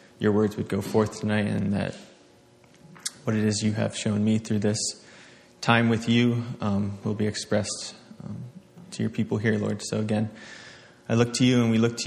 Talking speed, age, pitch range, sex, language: 200 wpm, 20-39, 105-120 Hz, male, English